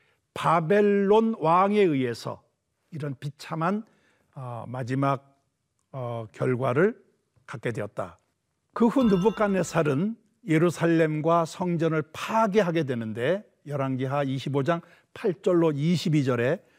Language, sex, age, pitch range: Korean, male, 60-79, 145-205 Hz